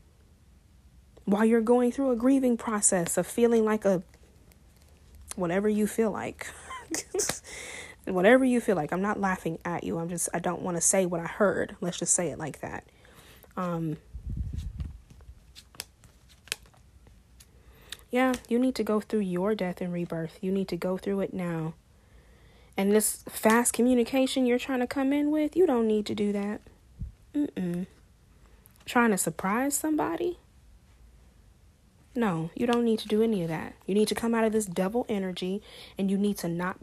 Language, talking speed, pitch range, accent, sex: English, 165 wpm, 170-225 Hz, American, female